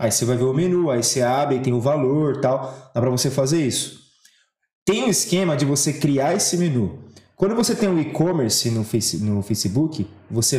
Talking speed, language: 205 wpm, Portuguese